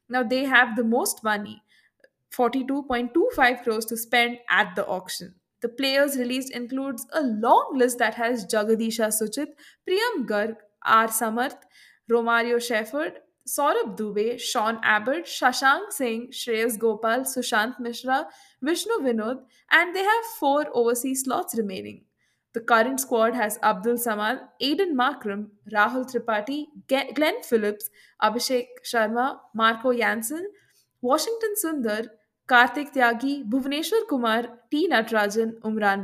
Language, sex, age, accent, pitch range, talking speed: English, female, 20-39, Indian, 220-270 Hz, 125 wpm